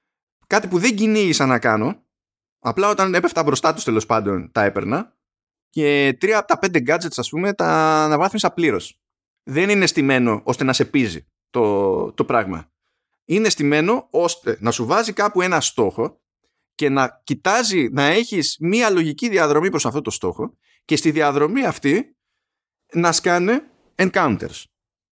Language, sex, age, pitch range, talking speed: Greek, male, 20-39, 115-180 Hz, 155 wpm